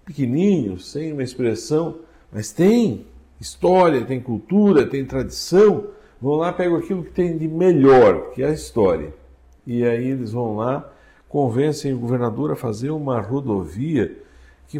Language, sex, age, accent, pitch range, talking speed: Portuguese, male, 60-79, Brazilian, 110-155 Hz, 145 wpm